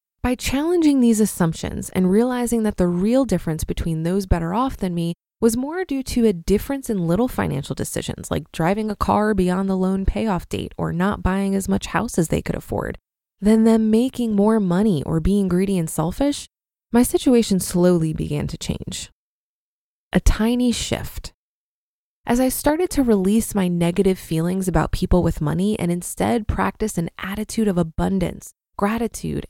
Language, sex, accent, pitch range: English, female, American, 180-235 Hz